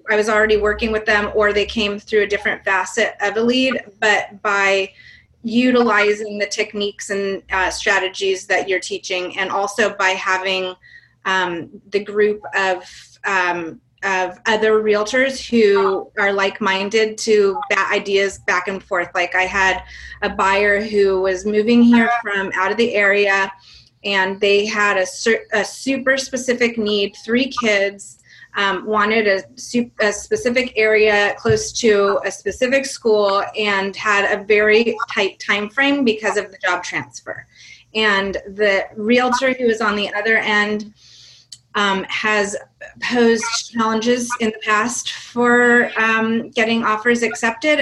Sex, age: female, 30-49